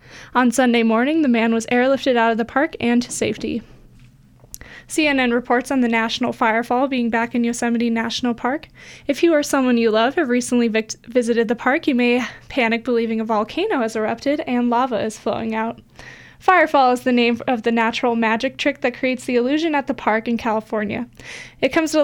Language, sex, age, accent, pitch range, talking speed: English, female, 20-39, American, 230-265 Hz, 195 wpm